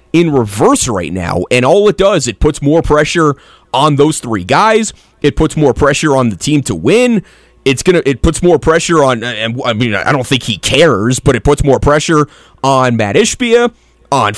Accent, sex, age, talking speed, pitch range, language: American, male, 30-49, 205 wpm, 125-175 Hz, English